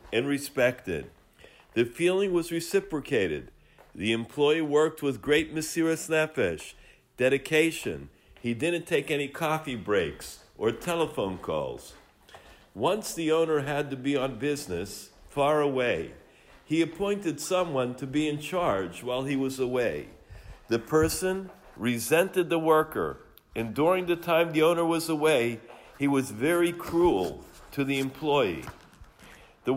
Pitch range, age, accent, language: 135-170 Hz, 60-79, American, English